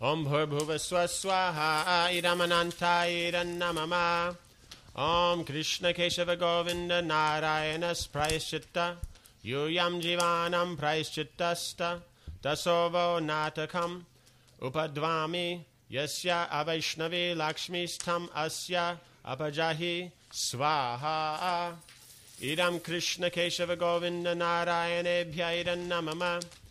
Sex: male